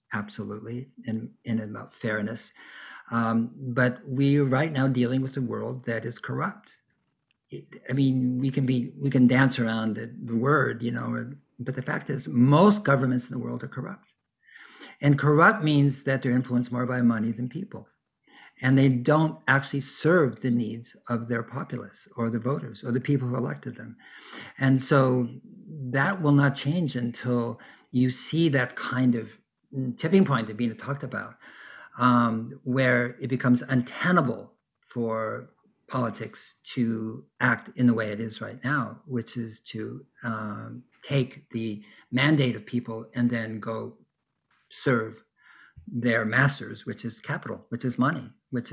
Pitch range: 115-135 Hz